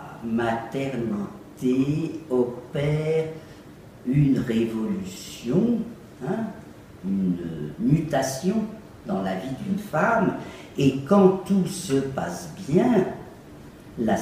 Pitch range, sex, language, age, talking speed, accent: 120-190 Hz, female, French, 50-69, 80 wpm, French